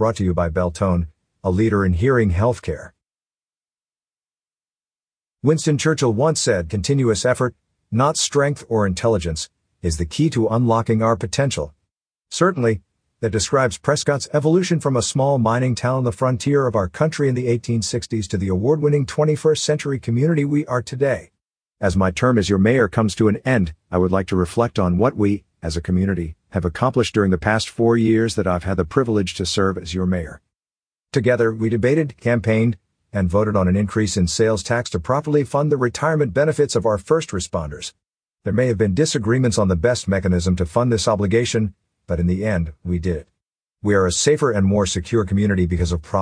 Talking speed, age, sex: 190 wpm, 50-69, male